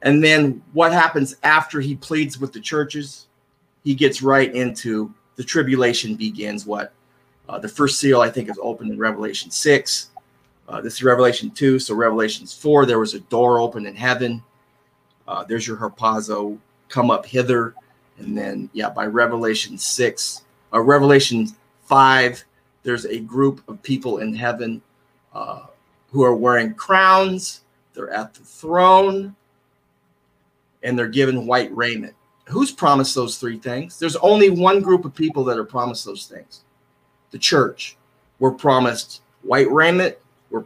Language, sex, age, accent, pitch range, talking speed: English, male, 30-49, American, 120-145 Hz, 150 wpm